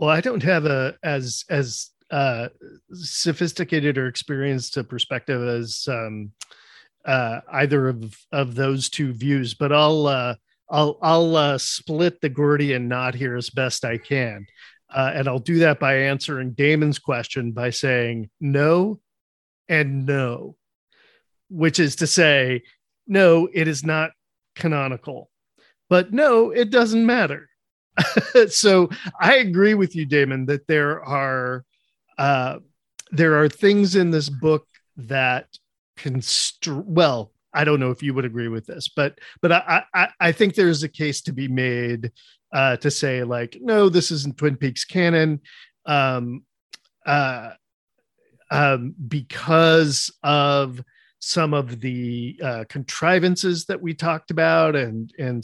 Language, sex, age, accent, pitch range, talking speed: English, male, 40-59, American, 130-165 Hz, 145 wpm